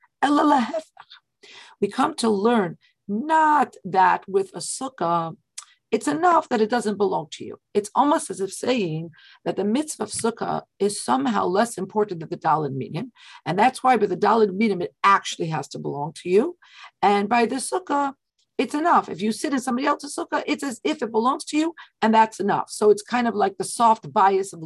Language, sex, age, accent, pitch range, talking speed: English, female, 50-69, American, 180-245 Hz, 195 wpm